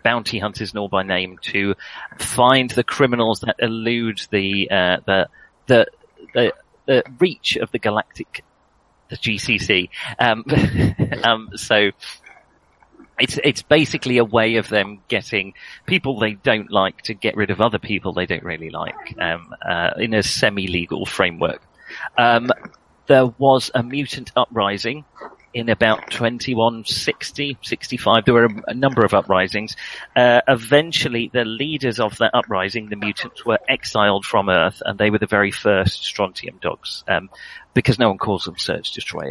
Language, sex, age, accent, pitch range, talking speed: English, male, 30-49, British, 105-135 Hz, 150 wpm